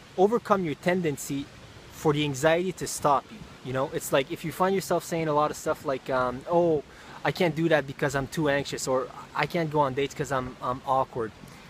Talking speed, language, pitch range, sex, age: 220 wpm, English, 135-170 Hz, male, 20-39